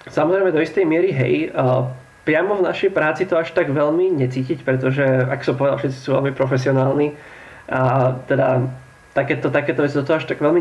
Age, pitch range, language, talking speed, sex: 20-39, 130-150 Hz, Slovak, 170 wpm, male